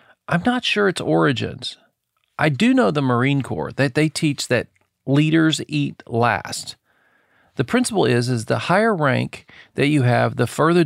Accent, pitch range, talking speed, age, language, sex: American, 110-140 Hz, 165 wpm, 40-59, English, male